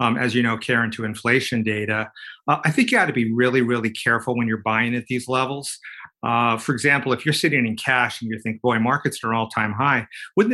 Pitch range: 115-140 Hz